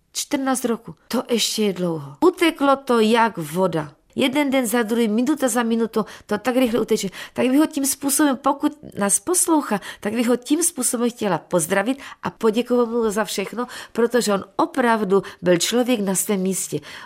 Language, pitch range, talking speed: Czech, 180-245 Hz, 170 wpm